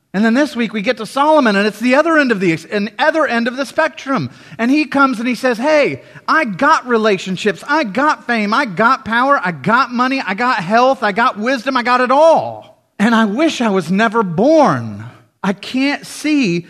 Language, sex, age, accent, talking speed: English, male, 30-49, American, 215 wpm